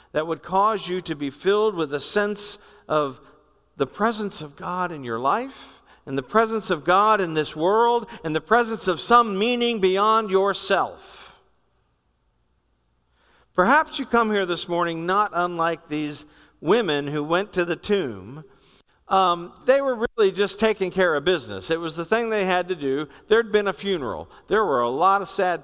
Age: 50-69